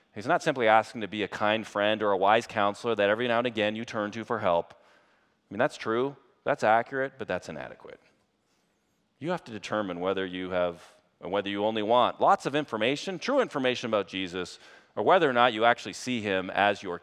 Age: 40-59